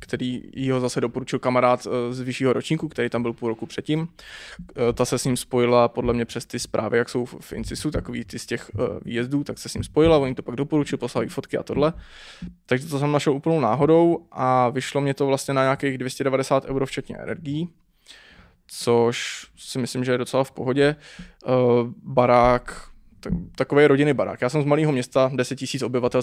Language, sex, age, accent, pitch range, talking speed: Czech, male, 20-39, native, 120-135 Hz, 190 wpm